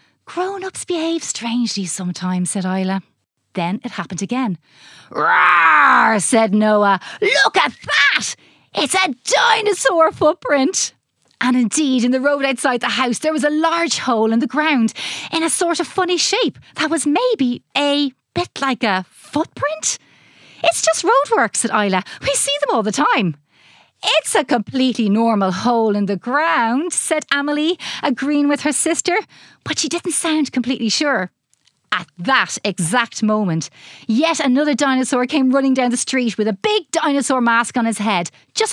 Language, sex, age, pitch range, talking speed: English, female, 30-49, 215-330 Hz, 160 wpm